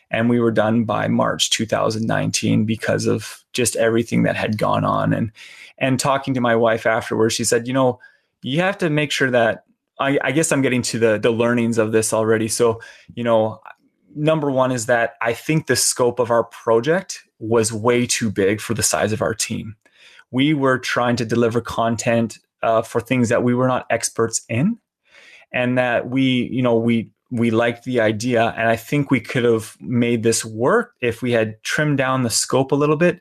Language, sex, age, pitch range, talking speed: English, male, 20-39, 115-135 Hz, 200 wpm